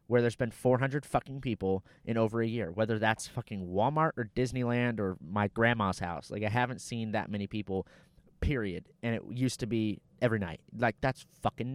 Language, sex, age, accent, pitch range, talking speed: English, male, 20-39, American, 110-145 Hz, 195 wpm